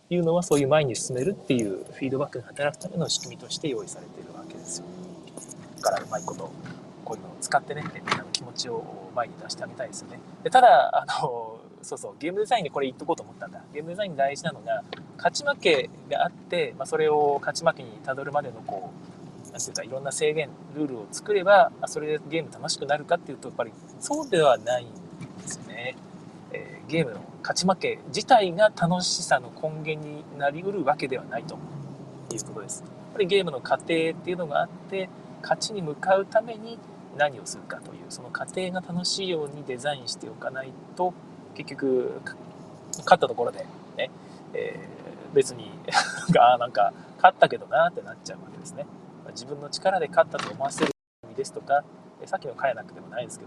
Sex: male